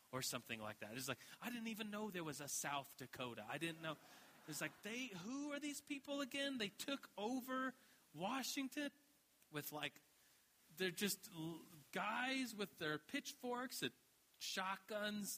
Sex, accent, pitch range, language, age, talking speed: male, American, 150-210 Hz, English, 30-49, 160 wpm